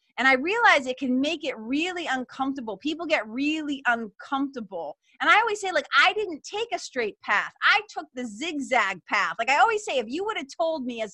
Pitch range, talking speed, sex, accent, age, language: 215-315 Hz, 215 wpm, female, American, 30-49, English